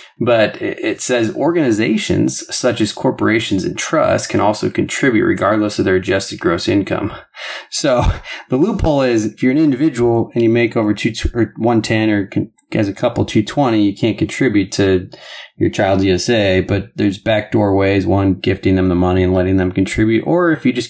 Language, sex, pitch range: English, male, 100-115 Hz